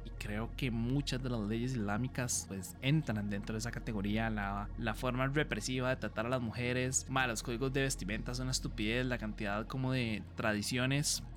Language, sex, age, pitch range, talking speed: Spanish, male, 20-39, 115-145 Hz, 180 wpm